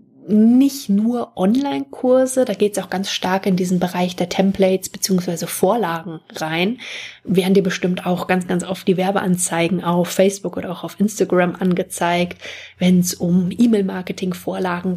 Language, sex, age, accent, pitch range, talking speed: German, female, 20-39, German, 180-200 Hz, 140 wpm